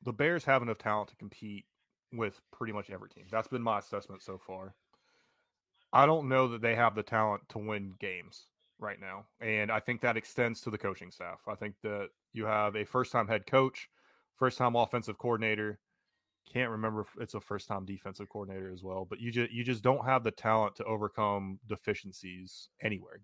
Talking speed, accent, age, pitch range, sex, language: 195 wpm, American, 20-39, 105-125 Hz, male, English